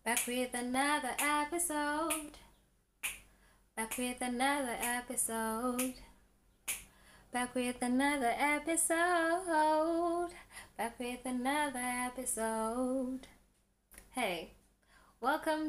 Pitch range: 185-255 Hz